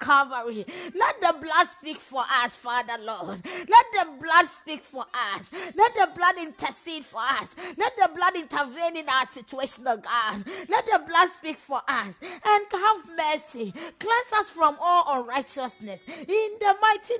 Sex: female